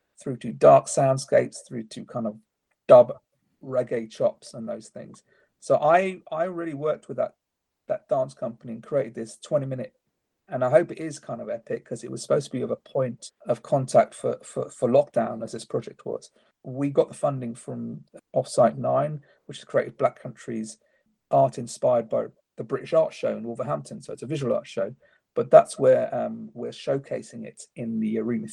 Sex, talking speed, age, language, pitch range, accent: male, 195 wpm, 40-59, English, 115-160 Hz, British